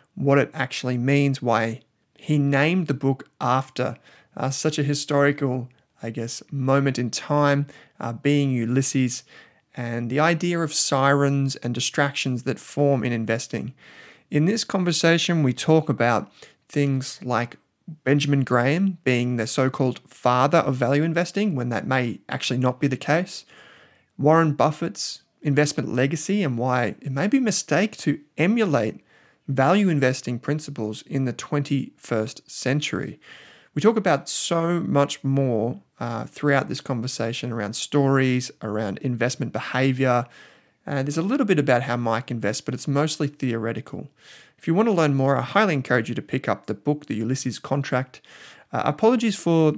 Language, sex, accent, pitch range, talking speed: English, male, Australian, 125-150 Hz, 155 wpm